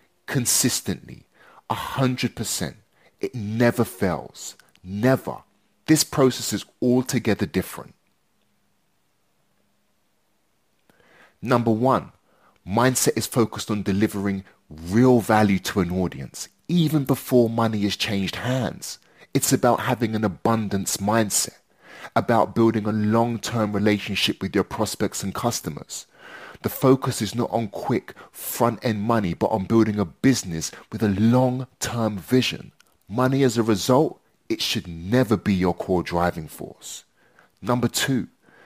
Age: 30-49